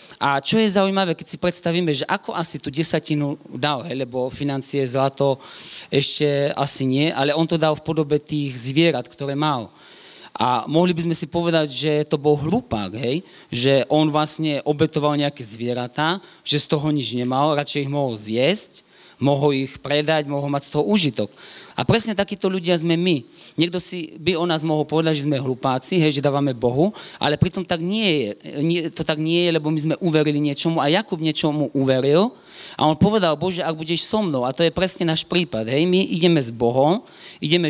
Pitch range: 140-165 Hz